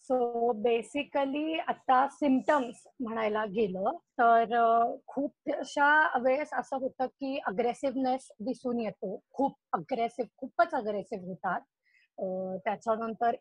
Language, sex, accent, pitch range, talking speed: Marathi, female, native, 225-285 Hz, 95 wpm